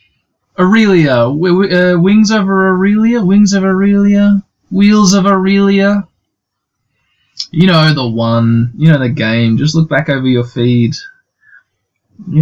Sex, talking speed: male, 135 wpm